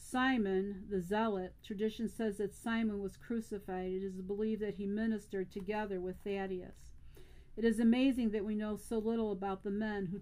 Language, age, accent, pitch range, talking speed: English, 50-69, American, 195-220 Hz, 175 wpm